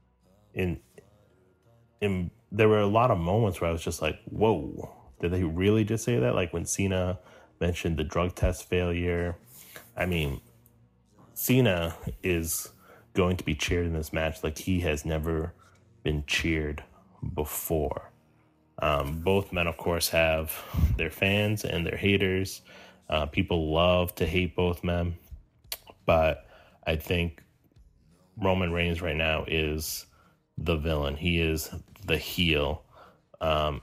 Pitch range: 80-90 Hz